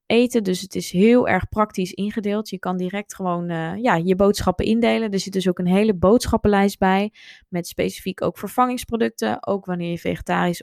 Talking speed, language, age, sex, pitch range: 180 wpm, Dutch, 20-39, female, 175-215 Hz